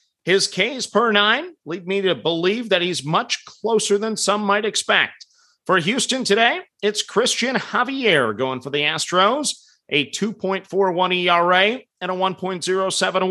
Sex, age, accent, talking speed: male, 40-59, American, 145 wpm